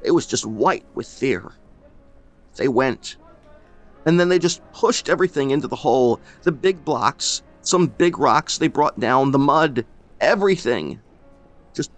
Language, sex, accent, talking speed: English, male, American, 150 wpm